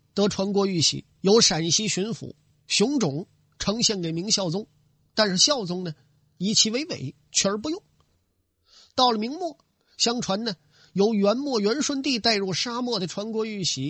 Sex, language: male, Chinese